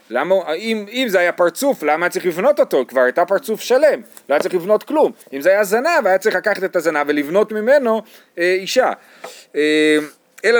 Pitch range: 155-210 Hz